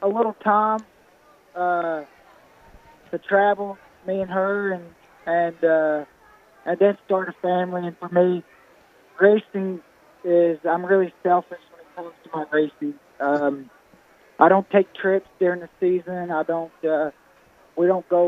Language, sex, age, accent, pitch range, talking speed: English, male, 20-39, American, 165-185 Hz, 140 wpm